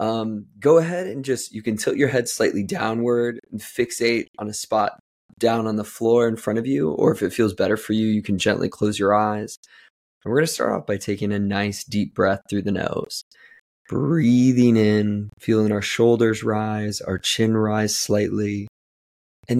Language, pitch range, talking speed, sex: English, 100-110 Hz, 190 wpm, male